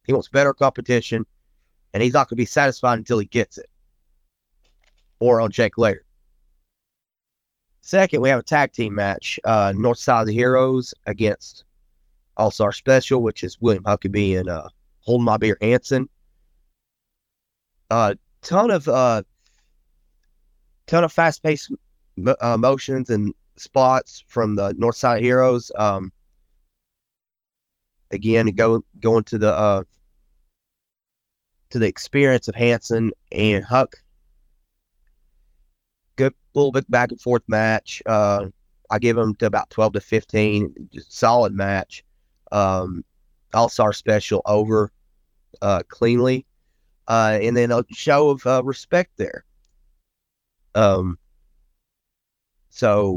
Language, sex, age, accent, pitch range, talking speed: English, male, 30-49, American, 80-120 Hz, 125 wpm